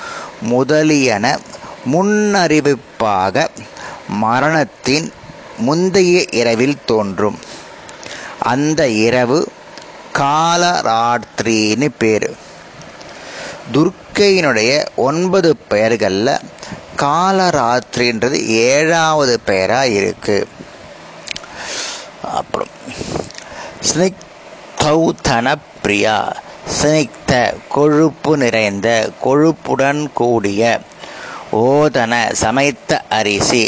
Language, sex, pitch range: Tamil, male, 115-160 Hz